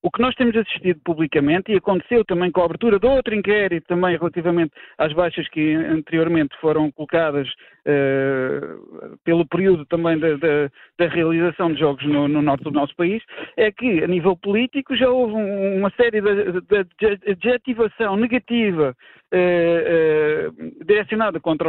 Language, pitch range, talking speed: Portuguese, 165-235 Hz, 165 wpm